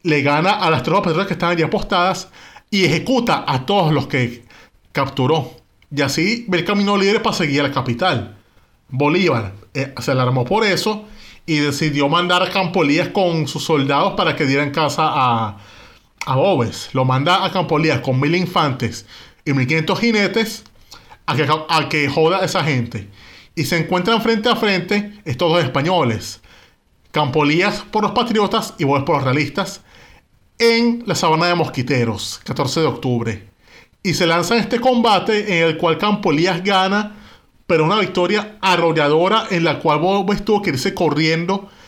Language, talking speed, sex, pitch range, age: Spanish, 170 wpm, male, 145-200 Hz, 30-49